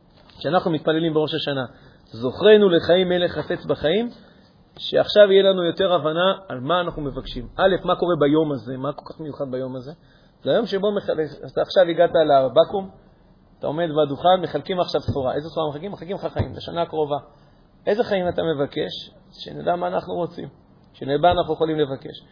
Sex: male